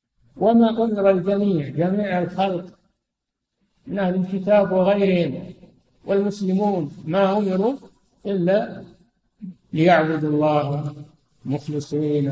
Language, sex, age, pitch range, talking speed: Arabic, male, 60-79, 145-185 Hz, 80 wpm